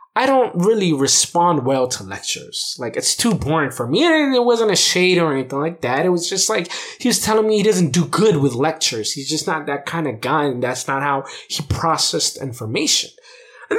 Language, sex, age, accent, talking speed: English, male, 20-39, American, 220 wpm